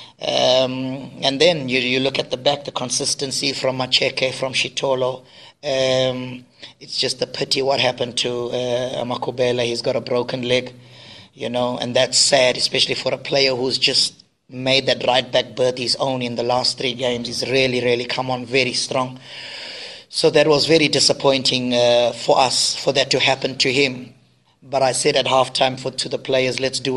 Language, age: English, 30-49